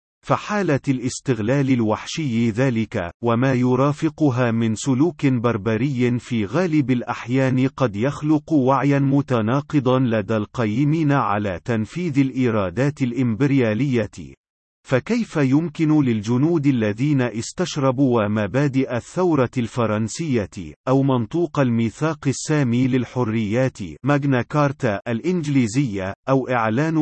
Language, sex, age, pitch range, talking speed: Arabic, male, 40-59, 115-140 Hz, 90 wpm